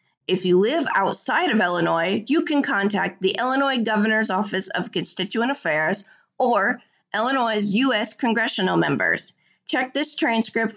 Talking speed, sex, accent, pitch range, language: 135 wpm, female, American, 195-260 Hz, English